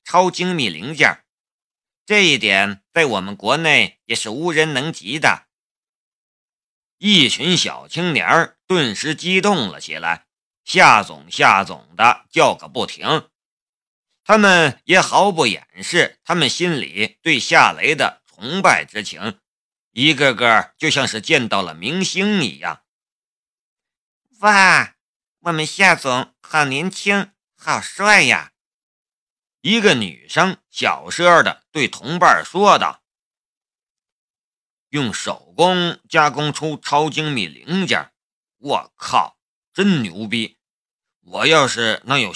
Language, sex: Chinese, male